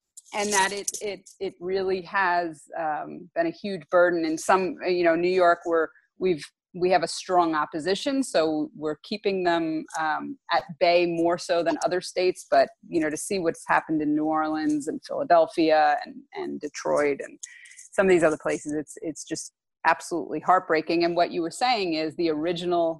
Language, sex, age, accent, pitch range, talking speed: English, female, 30-49, American, 160-205 Hz, 185 wpm